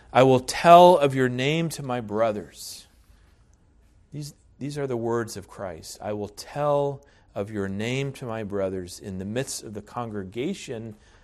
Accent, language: American, English